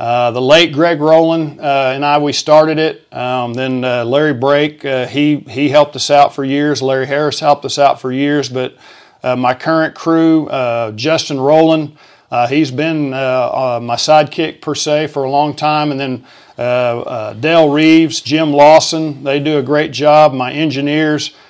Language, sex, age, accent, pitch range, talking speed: English, male, 50-69, American, 135-155 Hz, 185 wpm